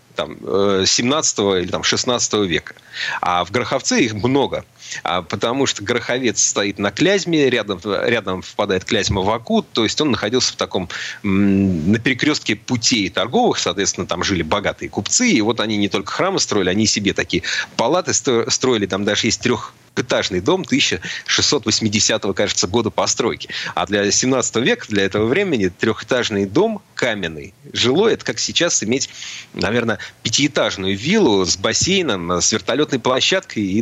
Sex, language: male, Russian